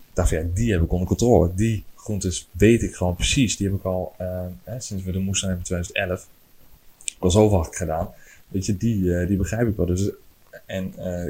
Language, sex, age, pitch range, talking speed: Dutch, male, 20-39, 90-105 Hz, 230 wpm